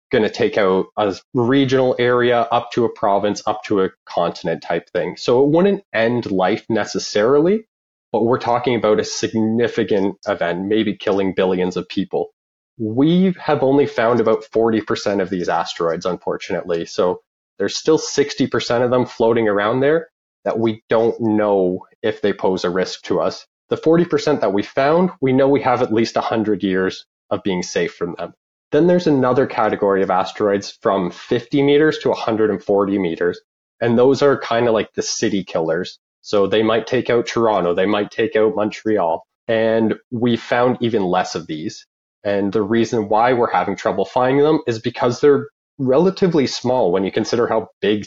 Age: 20-39